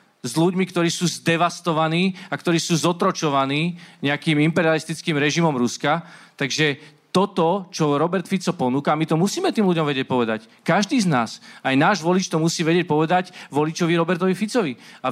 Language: Slovak